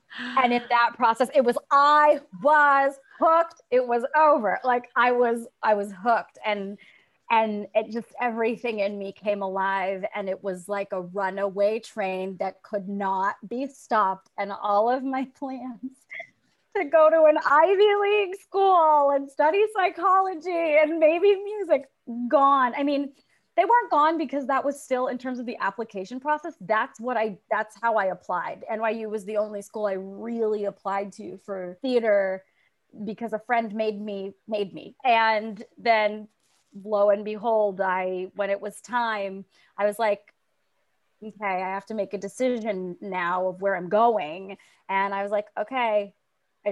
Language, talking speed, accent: English, 165 wpm, American